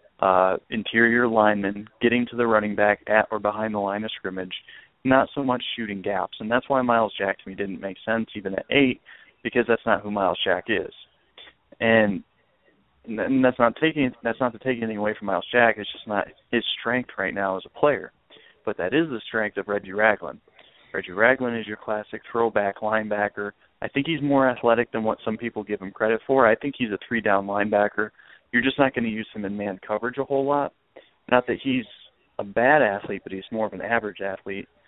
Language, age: English, 20-39